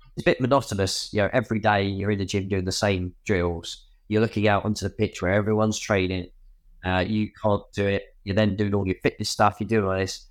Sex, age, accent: male, 20-39, British